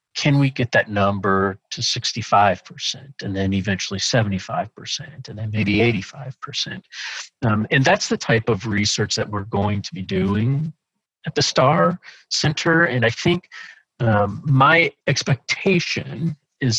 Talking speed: 140 wpm